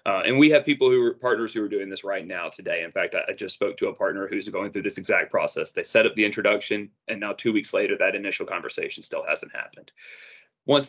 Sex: male